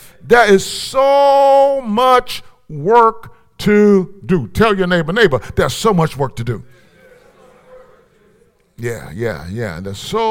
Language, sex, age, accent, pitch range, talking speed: English, male, 50-69, American, 160-225 Hz, 130 wpm